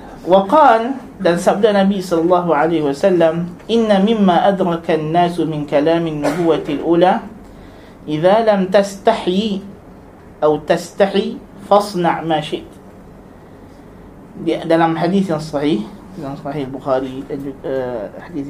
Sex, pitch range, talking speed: male, 155-195 Hz, 110 wpm